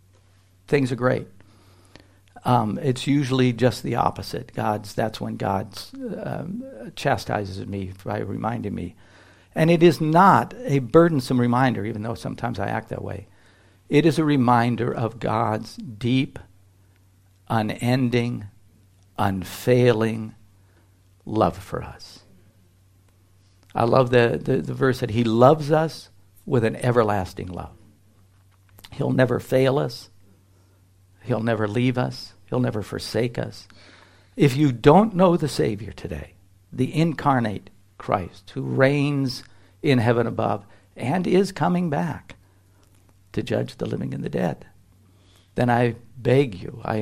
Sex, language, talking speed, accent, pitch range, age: male, English, 130 wpm, American, 95-130 Hz, 60-79